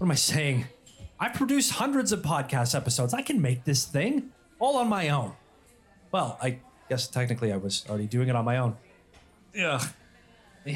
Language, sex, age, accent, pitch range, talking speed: English, male, 30-49, American, 125-165 Hz, 185 wpm